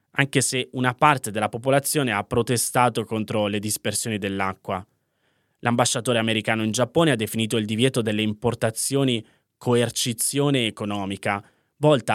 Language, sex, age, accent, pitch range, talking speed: Italian, male, 20-39, native, 110-130 Hz, 125 wpm